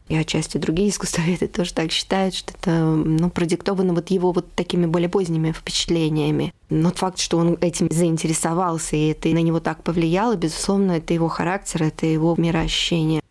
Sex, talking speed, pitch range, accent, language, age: female, 160 wpm, 160-185 Hz, native, Russian, 20-39